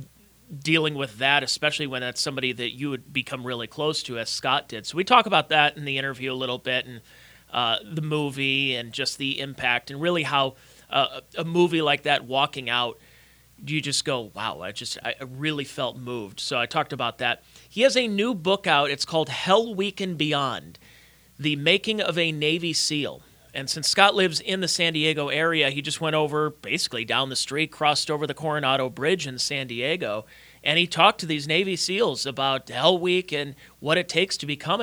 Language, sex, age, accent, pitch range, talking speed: English, male, 30-49, American, 130-160 Hz, 205 wpm